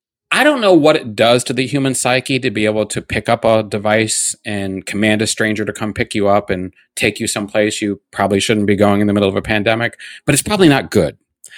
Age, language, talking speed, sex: 30-49, English, 245 wpm, male